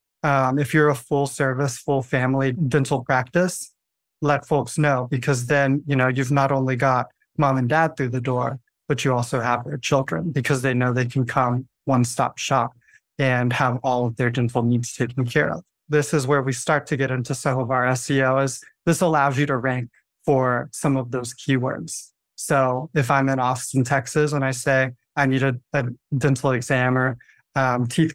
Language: English